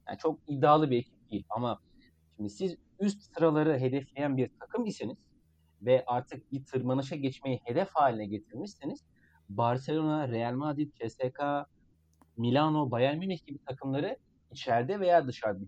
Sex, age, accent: male, 40-59, native